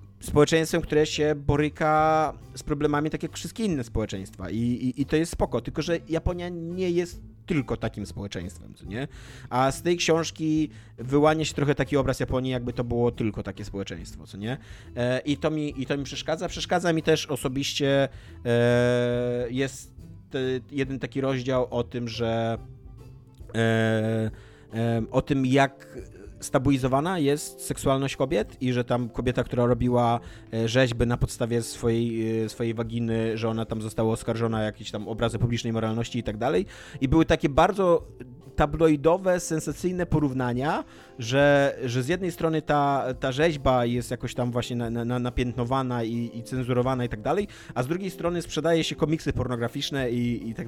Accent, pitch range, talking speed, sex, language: native, 115-150 Hz, 155 wpm, male, Polish